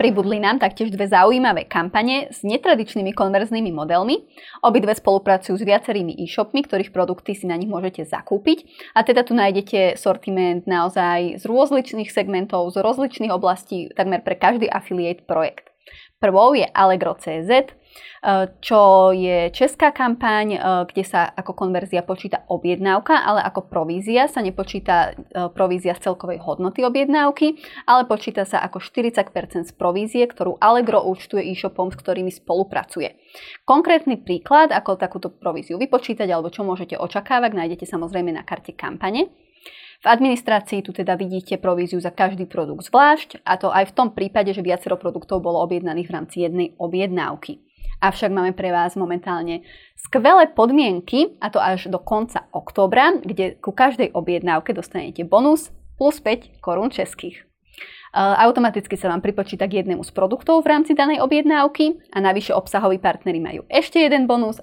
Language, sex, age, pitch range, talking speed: Slovak, female, 20-39, 180-240 Hz, 150 wpm